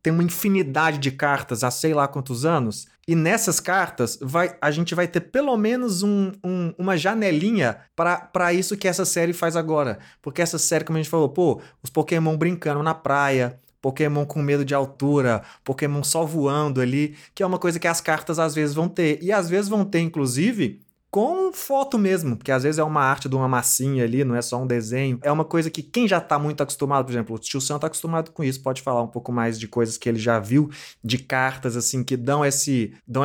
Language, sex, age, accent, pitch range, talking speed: Portuguese, male, 20-39, Brazilian, 135-175 Hz, 220 wpm